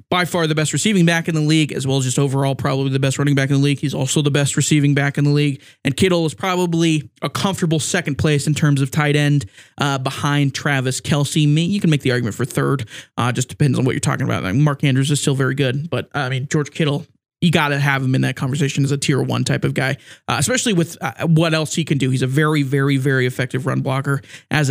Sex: male